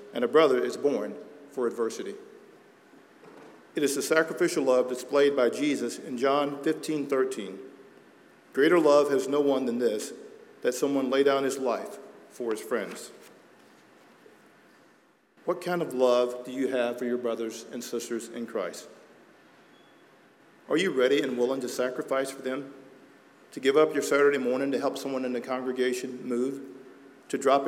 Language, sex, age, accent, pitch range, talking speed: English, male, 50-69, American, 125-150 Hz, 160 wpm